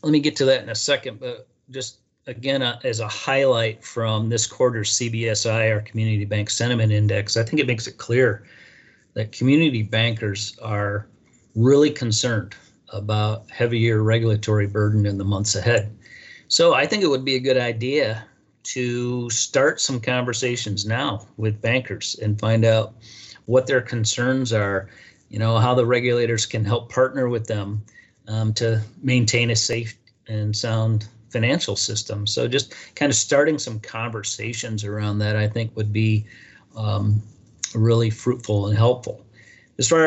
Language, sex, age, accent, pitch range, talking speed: English, male, 40-59, American, 110-125 Hz, 160 wpm